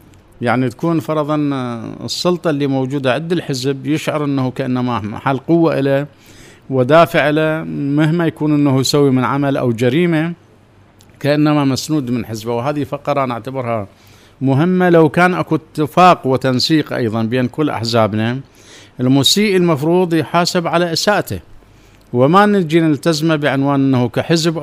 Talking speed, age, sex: 130 wpm, 50-69, male